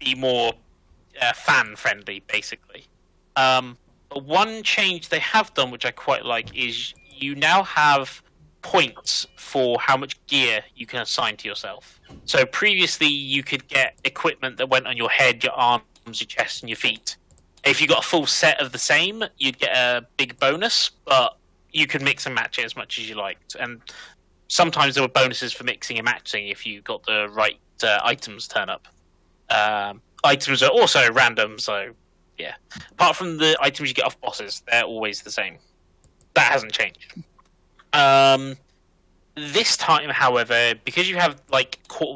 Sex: male